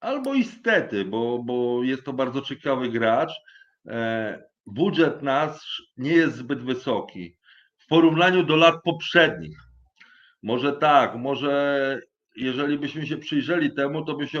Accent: Polish